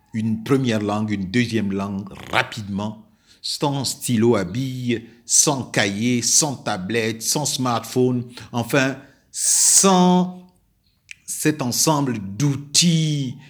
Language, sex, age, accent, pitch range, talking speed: French, male, 50-69, French, 110-145 Hz, 100 wpm